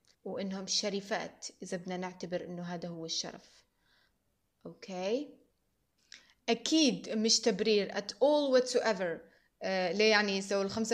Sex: female